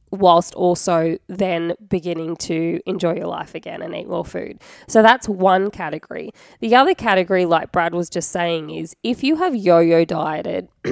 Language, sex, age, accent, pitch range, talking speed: English, female, 20-39, Australian, 165-190 Hz, 170 wpm